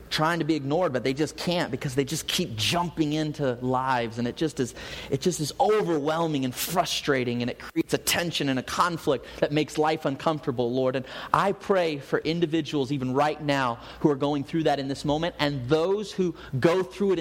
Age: 30-49